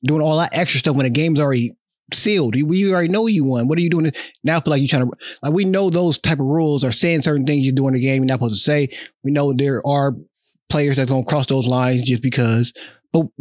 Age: 20-39